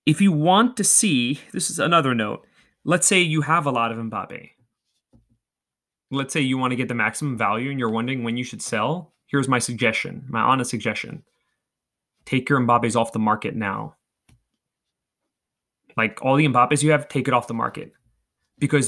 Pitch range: 115-155 Hz